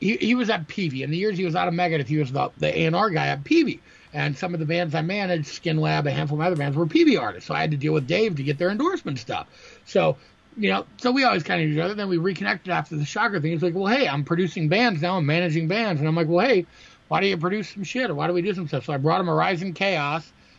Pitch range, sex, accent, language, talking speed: 155-190 Hz, male, American, English, 310 wpm